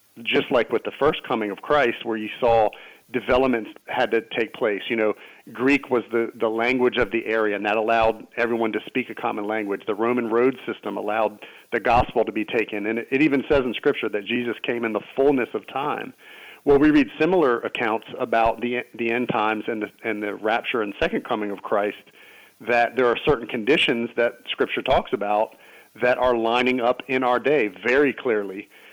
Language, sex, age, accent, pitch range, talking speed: English, male, 40-59, American, 110-125 Hz, 200 wpm